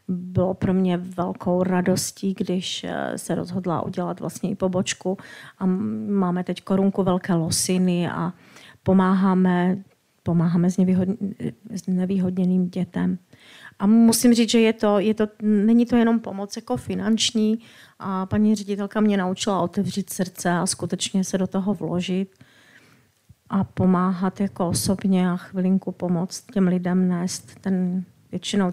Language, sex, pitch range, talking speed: Czech, female, 180-195 Hz, 130 wpm